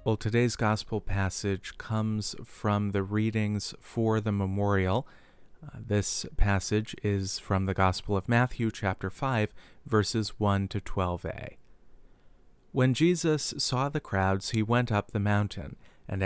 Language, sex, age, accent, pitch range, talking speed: English, male, 40-59, American, 100-125 Hz, 135 wpm